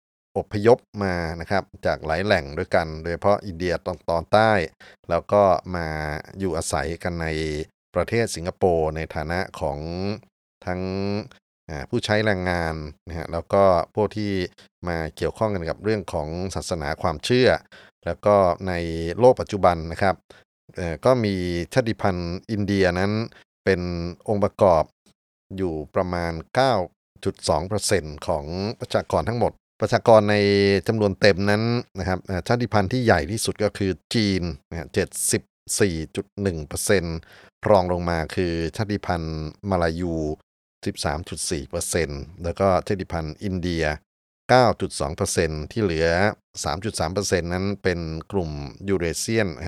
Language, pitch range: Thai, 85-105 Hz